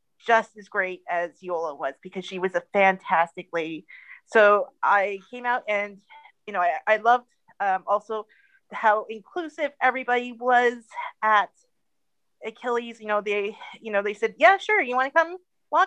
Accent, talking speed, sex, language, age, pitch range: American, 165 wpm, female, English, 30-49, 190-255 Hz